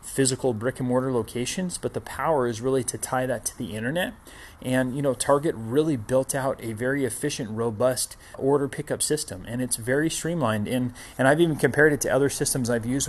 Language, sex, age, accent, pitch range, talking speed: English, male, 30-49, American, 115-135 Hz, 205 wpm